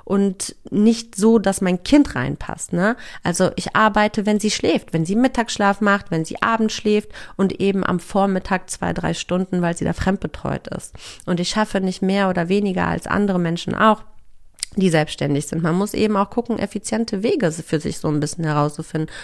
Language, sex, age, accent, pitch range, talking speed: German, female, 30-49, German, 175-220 Hz, 185 wpm